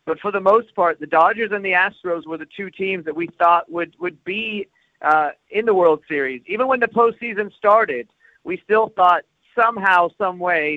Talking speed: 200 wpm